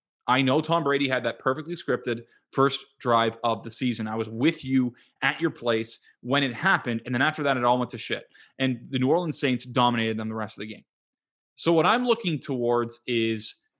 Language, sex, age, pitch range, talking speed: English, male, 20-39, 120-155 Hz, 215 wpm